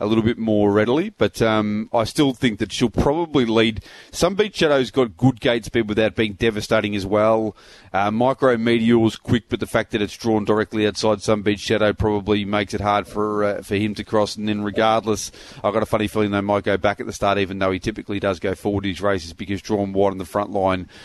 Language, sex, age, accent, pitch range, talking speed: English, male, 30-49, Australian, 100-115 Hz, 235 wpm